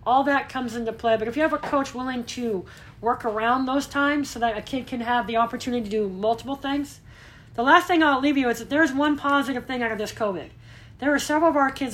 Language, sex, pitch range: English, female, 220-290 Hz